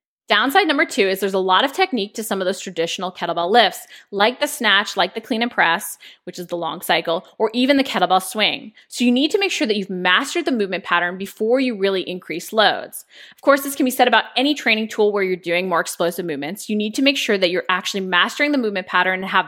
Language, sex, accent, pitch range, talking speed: English, female, American, 180-245 Hz, 250 wpm